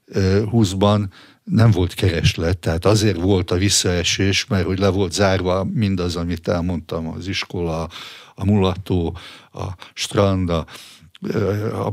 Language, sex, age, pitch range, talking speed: Hungarian, male, 60-79, 90-105 Hz, 125 wpm